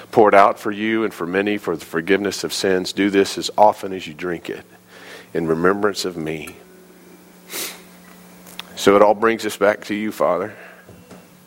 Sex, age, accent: male, 40-59, American